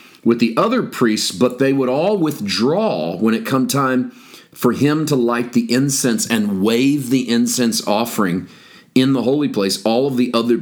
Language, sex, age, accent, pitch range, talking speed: English, male, 40-59, American, 120-150 Hz, 180 wpm